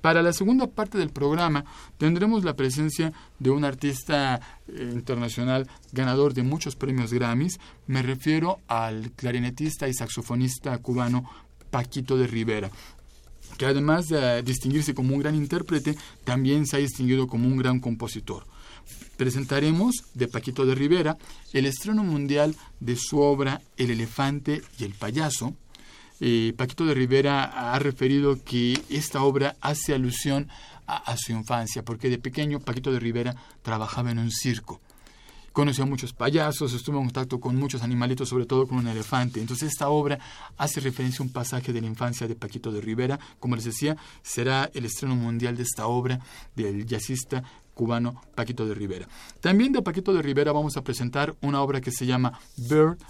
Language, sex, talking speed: Spanish, male, 160 wpm